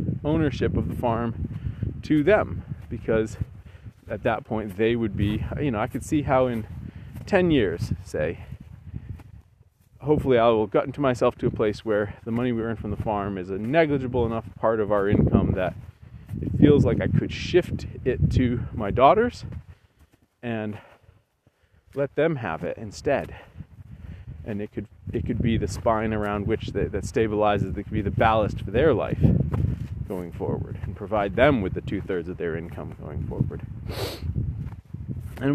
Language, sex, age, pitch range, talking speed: English, male, 30-49, 105-125 Hz, 170 wpm